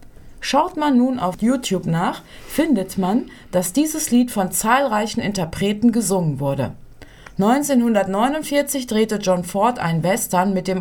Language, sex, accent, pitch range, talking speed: German, female, German, 180-235 Hz, 135 wpm